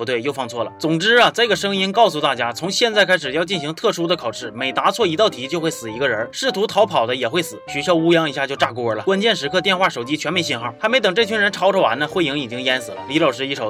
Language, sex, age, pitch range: Chinese, male, 20-39, 145-200 Hz